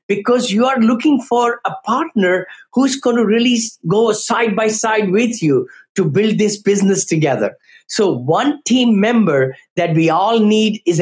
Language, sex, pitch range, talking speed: English, male, 180-235 Hz, 170 wpm